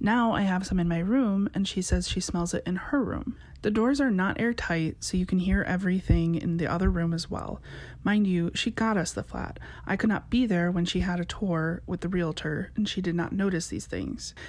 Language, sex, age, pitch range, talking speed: English, female, 30-49, 175-215 Hz, 245 wpm